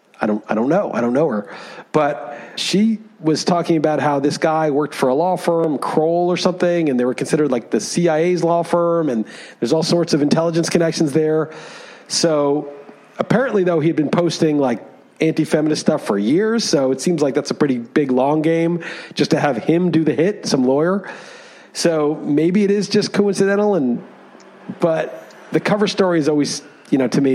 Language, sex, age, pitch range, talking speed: English, male, 40-59, 150-190 Hz, 195 wpm